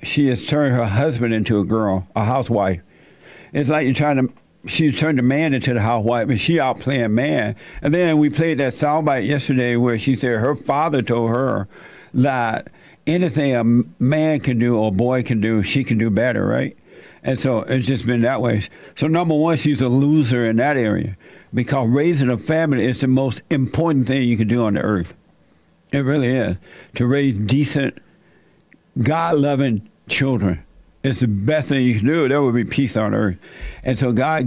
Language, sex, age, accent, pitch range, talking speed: English, male, 60-79, American, 120-145 Hz, 195 wpm